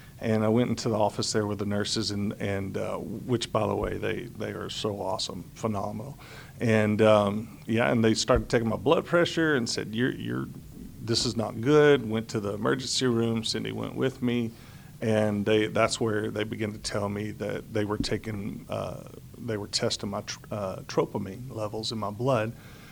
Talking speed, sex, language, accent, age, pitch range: 195 wpm, male, English, American, 40-59, 105-120 Hz